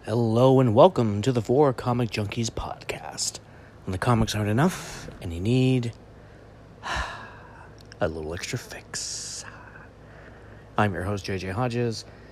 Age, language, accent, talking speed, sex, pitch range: 30-49, English, American, 125 wpm, male, 100-130 Hz